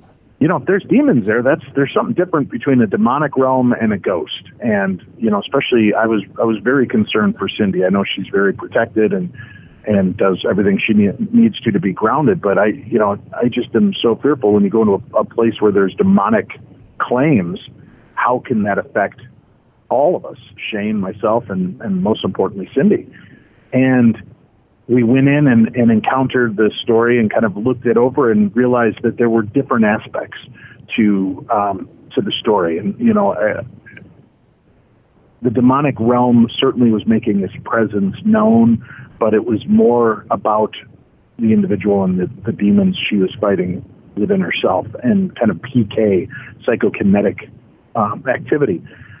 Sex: male